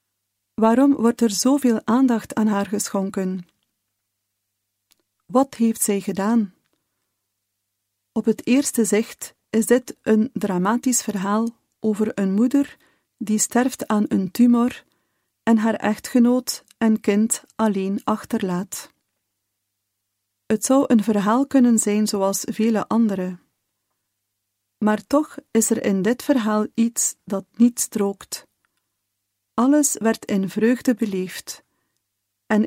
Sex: female